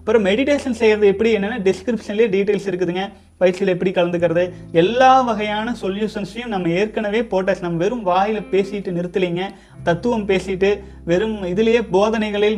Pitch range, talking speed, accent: 180-220 Hz, 130 wpm, native